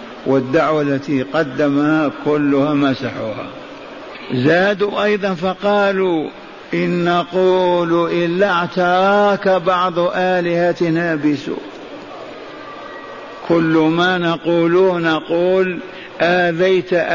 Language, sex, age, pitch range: Arabic, male, 50-69, 145-175 Hz